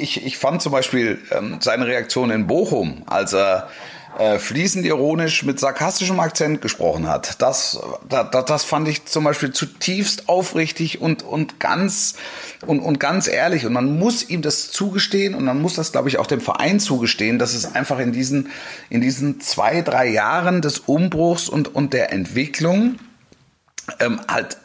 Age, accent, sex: 30-49, German, male